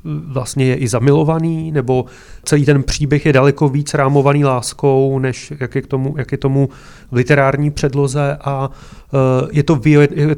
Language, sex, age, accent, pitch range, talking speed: Czech, male, 30-49, native, 125-140 Hz, 160 wpm